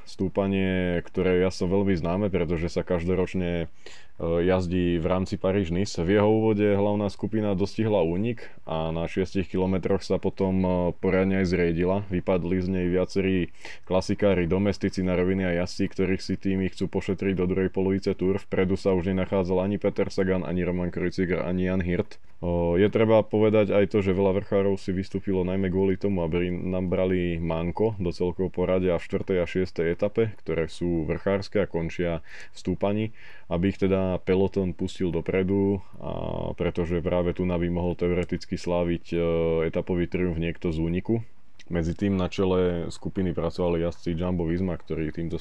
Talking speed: 165 wpm